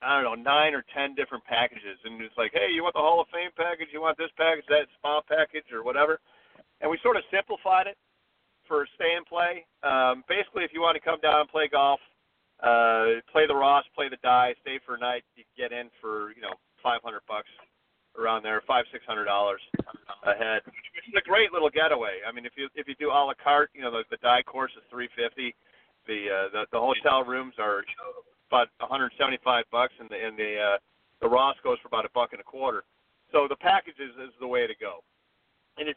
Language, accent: English, American